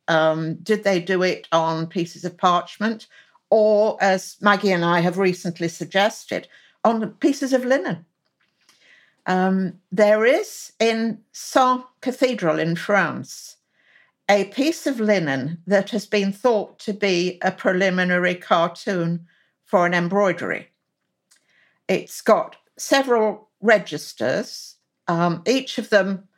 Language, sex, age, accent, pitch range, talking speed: English, female, 60-79, British, 175-235 Hz, 120 wpm